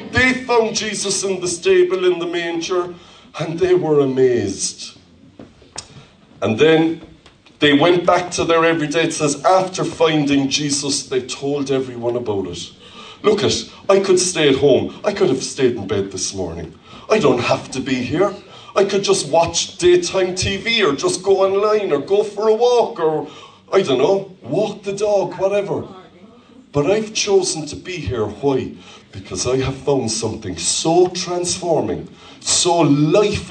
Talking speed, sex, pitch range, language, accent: 165 wpm, male, 140-195 Hz, English, Irish